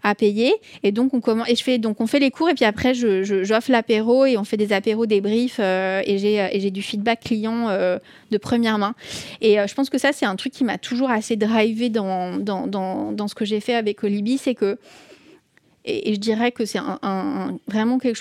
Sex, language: female, French